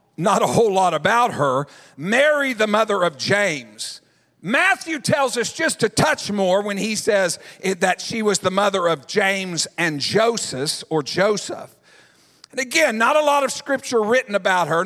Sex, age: male, 50-69